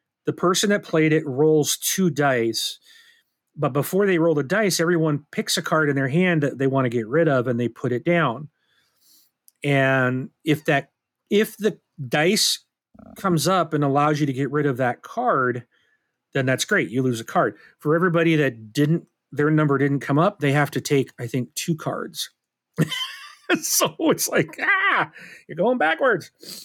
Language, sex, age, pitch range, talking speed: English, male, 40-59, 130-170 Hz, 180 wpm